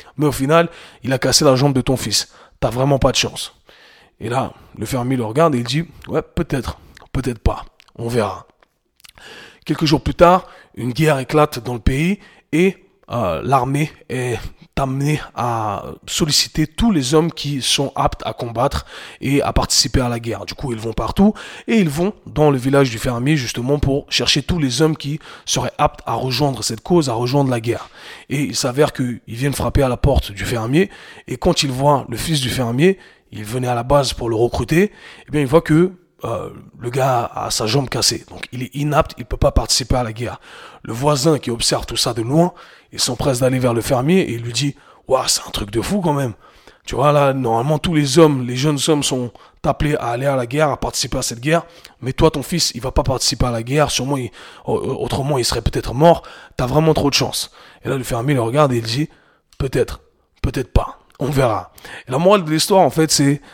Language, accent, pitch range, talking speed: French, French, 120-155 Hz, 230 wpm